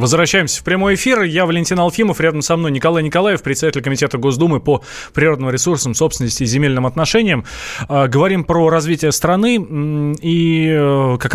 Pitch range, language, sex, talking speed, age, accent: 115-160 Hz, Russian, male, 150 wpm, 20-39, native